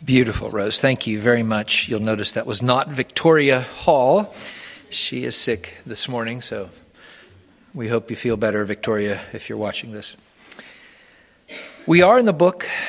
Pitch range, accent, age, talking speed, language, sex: 120-170 Hz, American, 40-59, 160 wpm, English, male